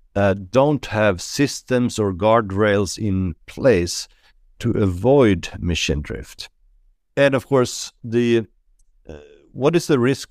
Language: English